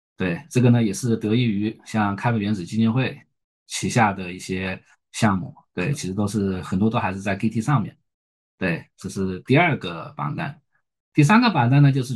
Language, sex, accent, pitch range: Chinese, male, native, 95-130 Hz